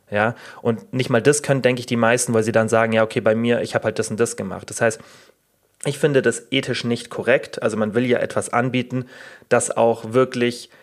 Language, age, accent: German, 30-49, German